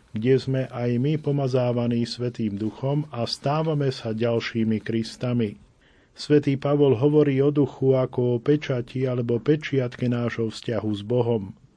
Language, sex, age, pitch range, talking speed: Slovak, male, 40-59, 115-140 Hz, 135 wpm